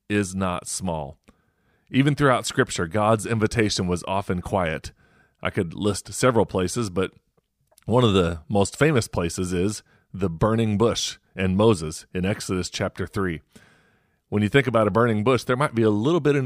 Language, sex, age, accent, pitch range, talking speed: English, male, 30-49, American, 90-115 Hz, 170 wpm